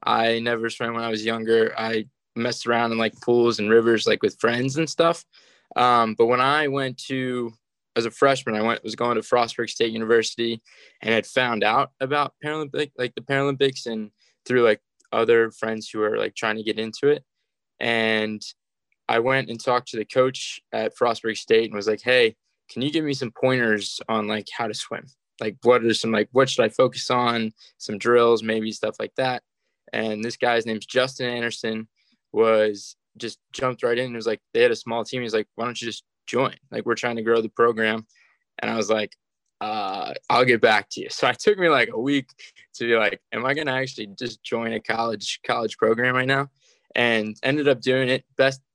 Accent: American